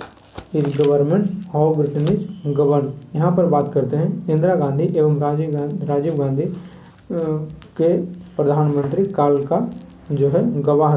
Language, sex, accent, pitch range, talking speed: Hindi, male, native, 140-165 Hz, 105 wpm